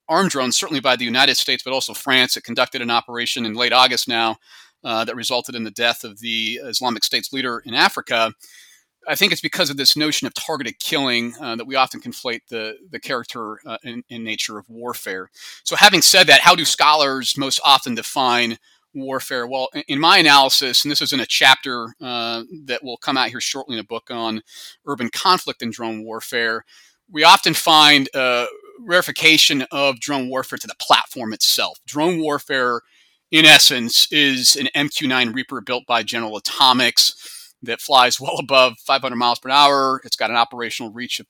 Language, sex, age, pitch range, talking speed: English, male, 30-49, 120-145 Hz, 185 wpm